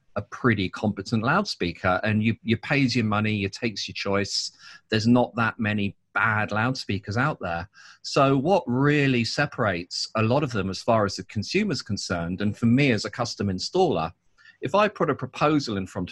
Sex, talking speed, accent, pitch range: male, 185 wpm, British, 100-125 Hz